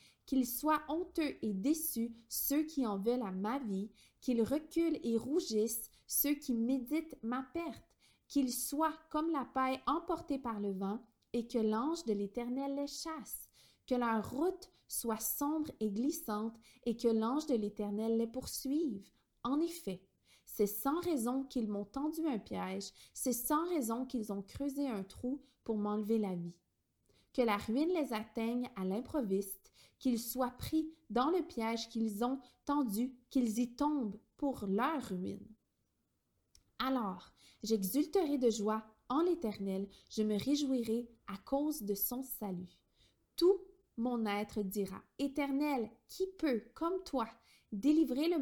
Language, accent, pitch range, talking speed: French, Canadian, 220-290 Hz, 150 wpm